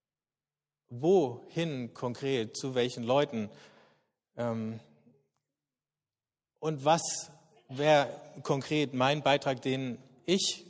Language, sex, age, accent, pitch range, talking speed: German, male, 40-59, German, 130-165 Hz, 80 wpm